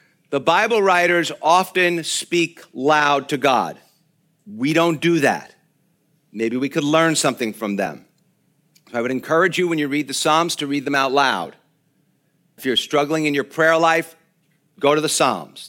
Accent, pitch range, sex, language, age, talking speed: American, 140-165 Hz, male, English, 50-69, 170 wpm